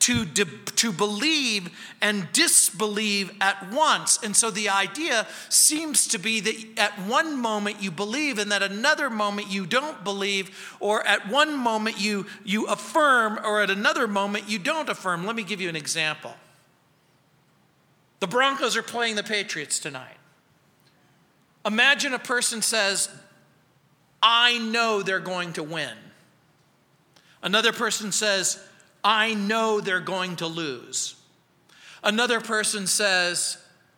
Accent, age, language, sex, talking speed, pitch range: American, 40-59, English, male, 135 wpm, 165-225 Hz